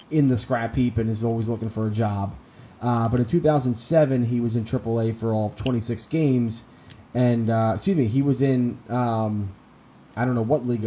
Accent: American